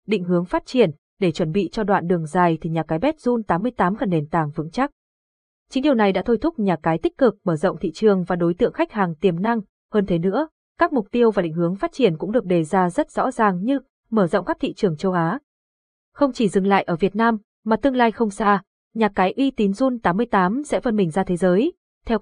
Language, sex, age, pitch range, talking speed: Vietnamese, female, 20-39, 180-240 Hz, 255 wpm